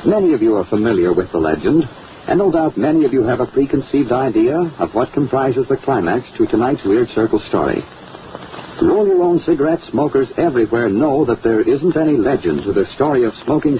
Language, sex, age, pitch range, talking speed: English, male, 60-79, 325-365 Hz, 195 wpm